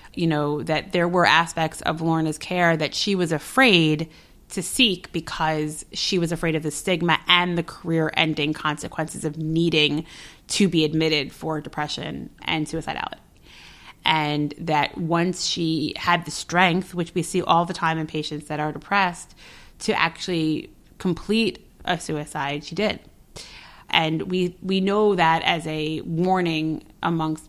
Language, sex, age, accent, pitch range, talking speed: English, female, 30-49, American, 155-175 Hz, 155 wpm